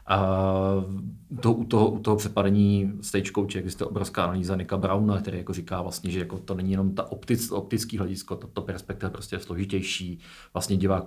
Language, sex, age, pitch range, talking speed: Czech, male, 40-59, 95-110 Hz, 185 wpm